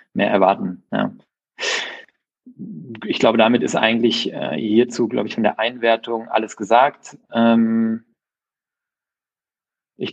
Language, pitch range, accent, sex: German, 110-135 Hz, German, male